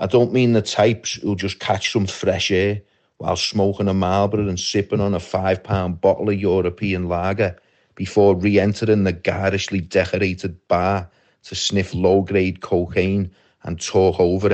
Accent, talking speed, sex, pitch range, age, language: British, 155 wpm, male, 95-115 Hz, 30-49, English